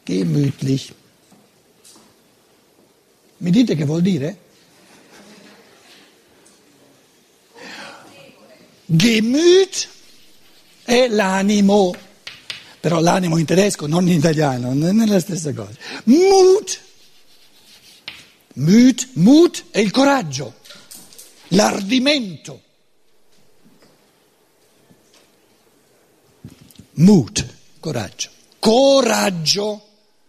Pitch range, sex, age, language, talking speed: 170-270 Hz, male, 60-79, Italian, 60 wpm